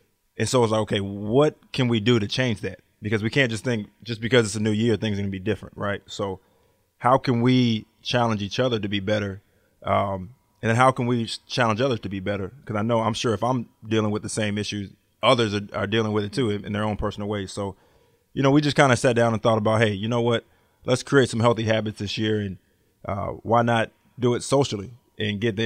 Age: 20-39